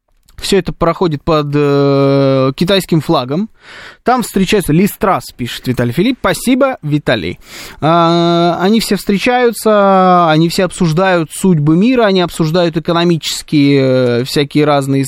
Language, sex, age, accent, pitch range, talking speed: Russian, male, 20-39, native, 145-185 Hz, 120 wpm